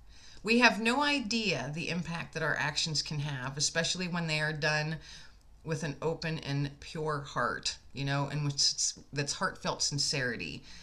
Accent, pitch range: American, 145-195 Hz